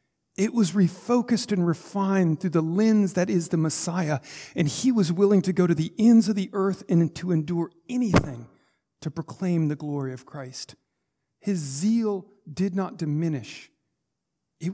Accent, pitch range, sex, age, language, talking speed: American, 140-195 Hz, male, 40-59, English, 165 wpm